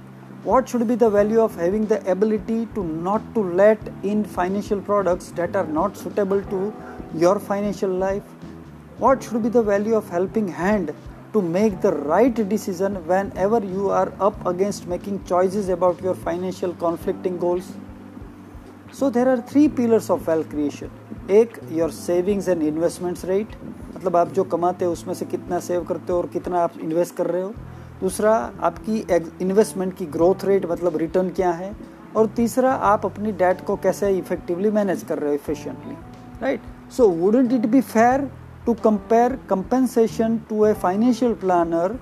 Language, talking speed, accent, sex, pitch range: English, 130 wpm, Indian, male, 180-225 Hz